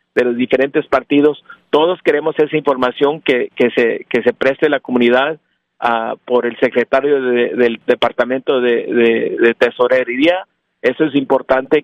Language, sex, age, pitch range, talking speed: Spanish, male, 50-69, 125-155 Hz, 155 wpm